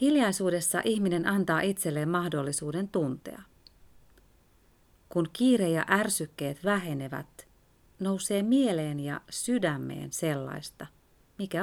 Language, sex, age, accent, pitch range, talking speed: Finnish, female, 30-49, native, 150-190 Hz, 90 wpm